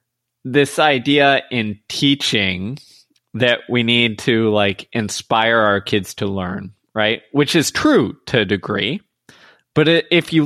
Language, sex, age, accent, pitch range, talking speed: English, male, 20-39, American, 110-140 Hz, 140 wpm